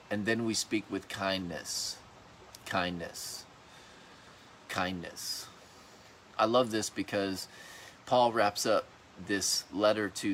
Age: 30-49